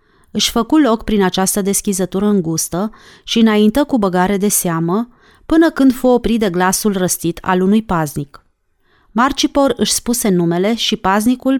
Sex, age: female, 30-49